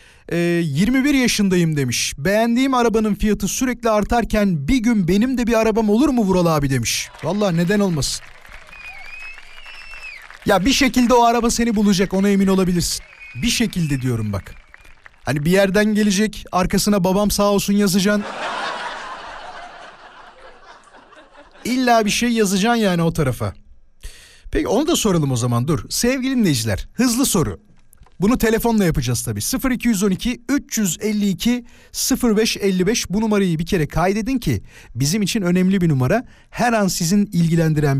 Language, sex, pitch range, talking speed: Turkish, male, 155-220 Hz, 135 wpm